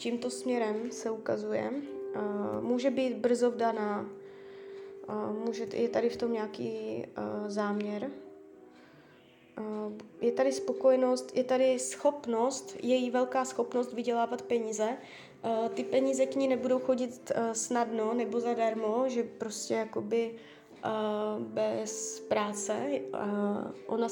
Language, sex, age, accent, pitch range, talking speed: Czech, female, 20-39, native, 205-245 Hz, 100 wpm